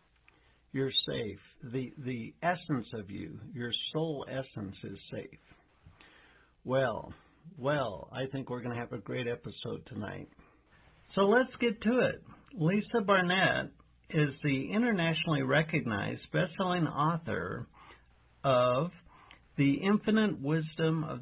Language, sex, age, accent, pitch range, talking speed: English, male, 60-79, American, 130-185 Hz, 120 wpm